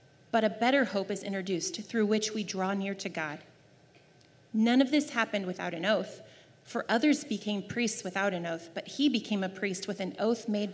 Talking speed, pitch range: 200 wpm, 185-225 Hz